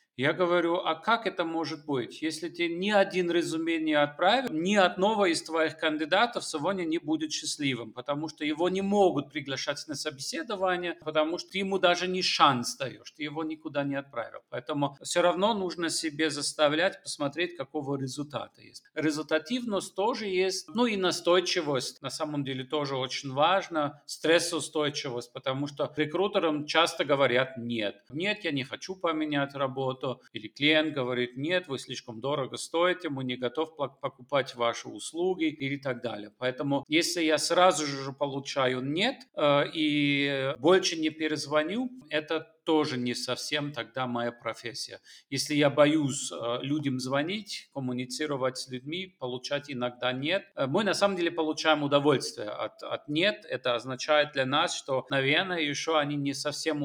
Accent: native